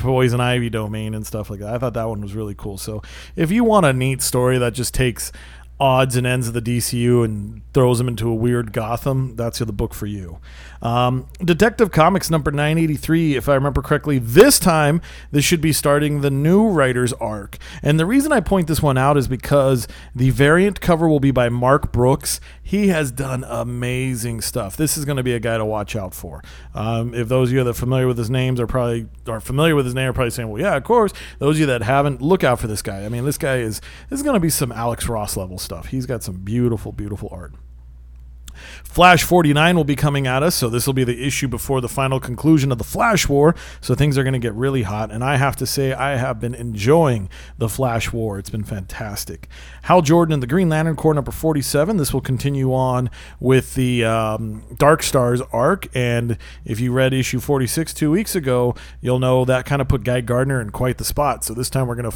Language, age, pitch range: English, 30-49, 115-145 Hz